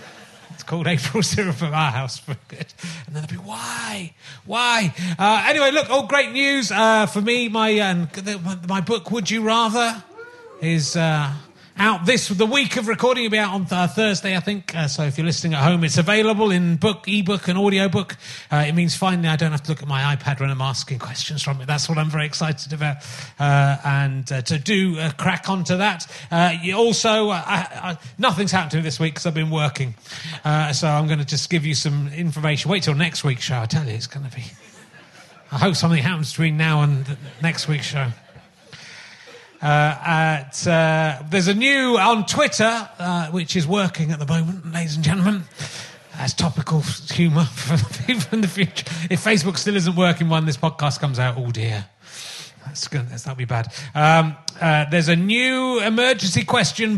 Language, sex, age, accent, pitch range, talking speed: English, male, 30-49, British, 145-195 Hz, 210 wpm